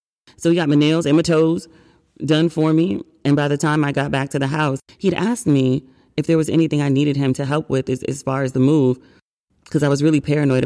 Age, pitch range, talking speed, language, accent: 30-49, 125-150 Hz, 255 wpm, English, American